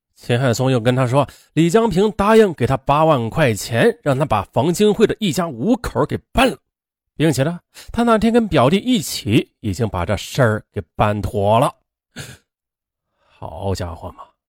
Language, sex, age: Chinese, male, 30-49